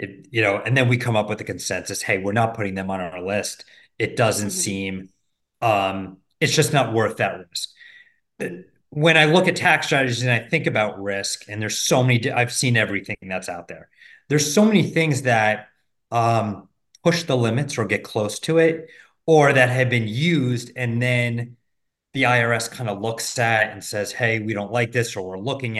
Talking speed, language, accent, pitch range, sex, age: 205 wpm, English, American, 110-135 Hz, male, 30-49